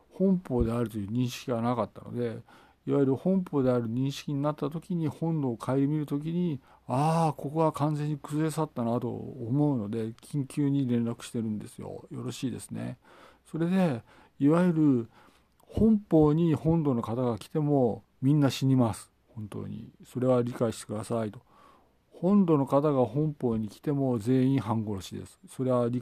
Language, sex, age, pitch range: Japanese, male, 50-69, 120-155 Hz